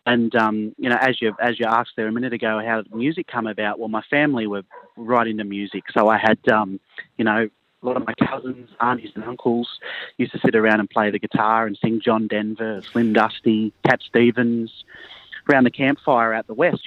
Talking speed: 215 wpm